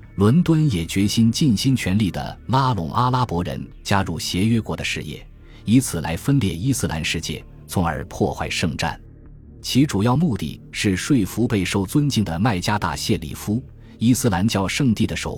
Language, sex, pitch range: Chinese, male, 85-115 Hz